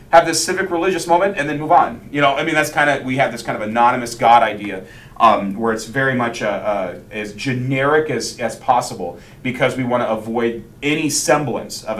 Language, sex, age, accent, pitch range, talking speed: English, male, 30-49, American, 125-155 Hz, 220 wpm